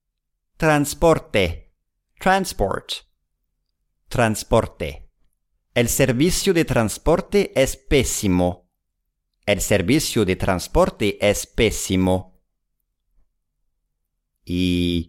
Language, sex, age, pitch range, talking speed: English, male, 50-69, 80-130 Hz, 65 wpm